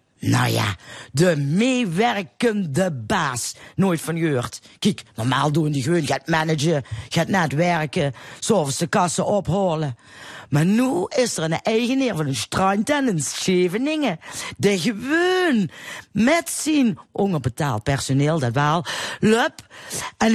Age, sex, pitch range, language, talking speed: 50-69, female, 155-235 Hz, Dutch, 125 wpm